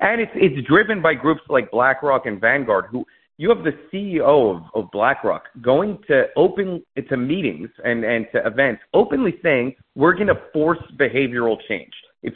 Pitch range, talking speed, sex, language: 125-185 Hz, 175 wpm, male, English